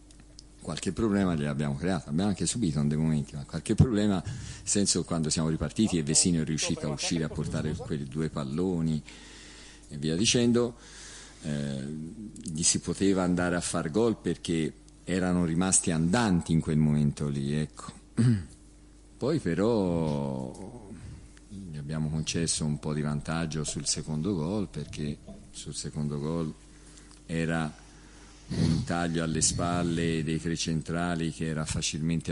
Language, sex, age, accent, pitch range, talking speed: Italian, male, 50-69, native, 75-85 Hz, 145 wpm